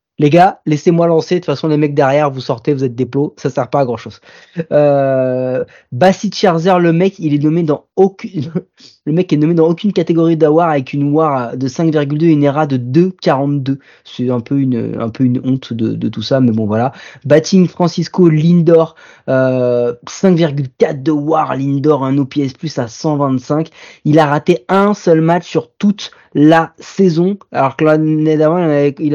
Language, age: French, 20-39